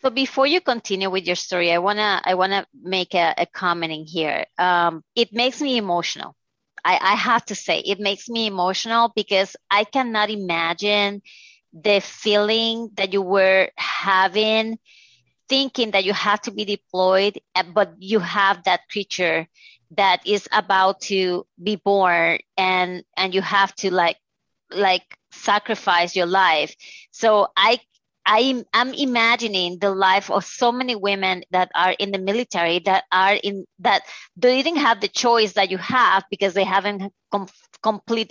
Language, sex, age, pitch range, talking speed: English, female, 30-49, 185-225 Hz, 160 wpm